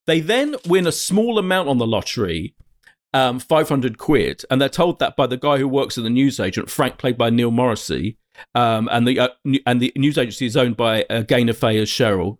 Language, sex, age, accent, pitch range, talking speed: English, male, 40-59, British, 120-155 Hz, 220 wpm